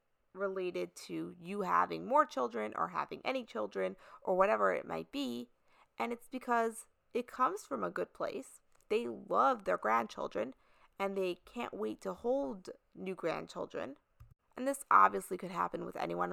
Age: 20-39